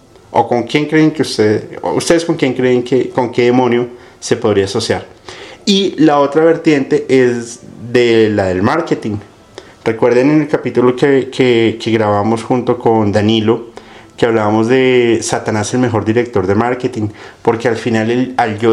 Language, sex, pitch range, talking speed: Spanish, male, 110-130 Hz, 165 wpm